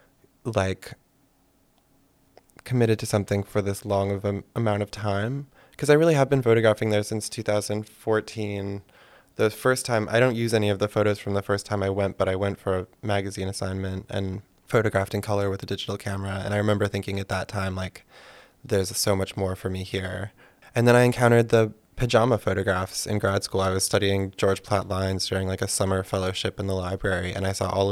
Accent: American